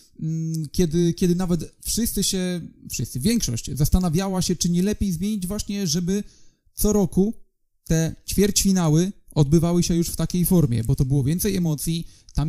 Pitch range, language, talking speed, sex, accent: 145-175 Hz, Polish, 145 wpm, male, native